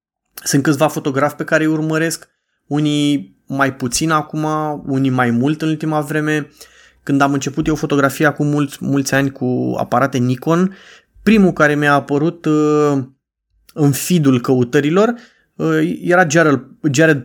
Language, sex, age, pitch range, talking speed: Romanian, male, 20-39, 135-160 Hz, 130 wpm